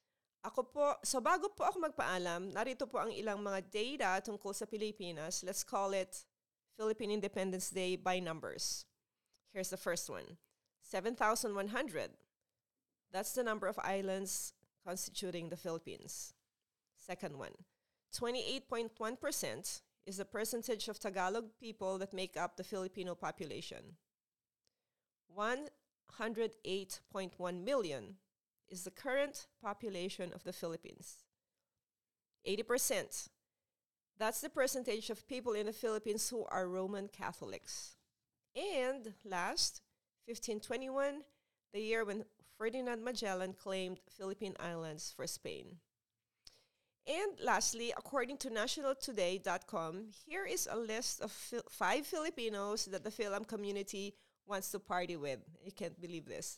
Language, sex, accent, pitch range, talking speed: English, female, Filipino, 185-235 Hz, 120 wpm